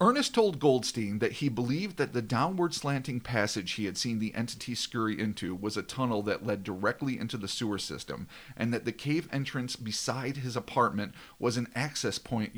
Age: 40-59